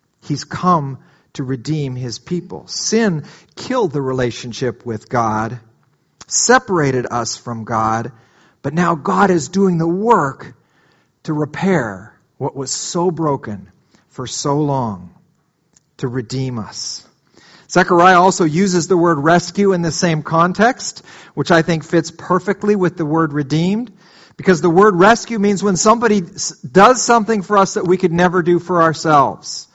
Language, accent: English, American